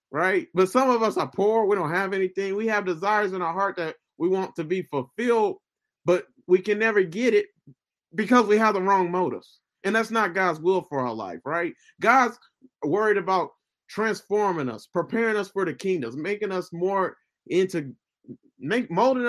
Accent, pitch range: American, 165-215 Hz